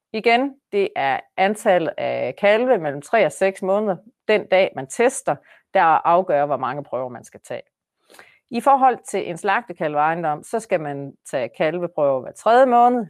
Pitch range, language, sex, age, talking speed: 165-235 Hz, Danish, female, 30-49, 170 wpm